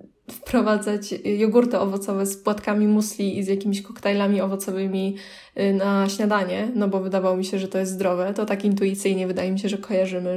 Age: 20-39